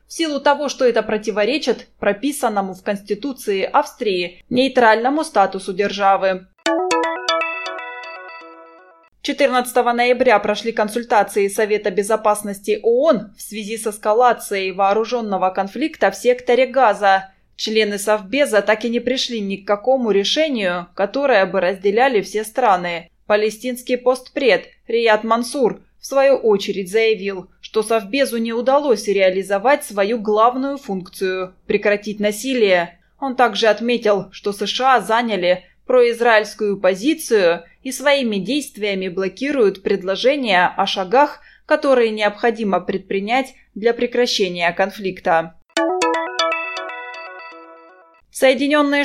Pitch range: 195-255 Hz